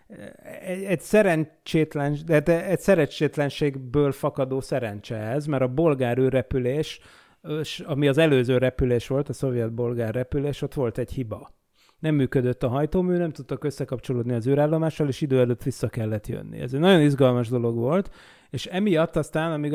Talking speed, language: 145 wpm, Hungarian